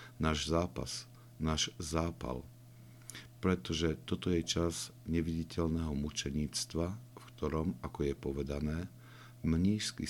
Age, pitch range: 60-79, 75-120 Hz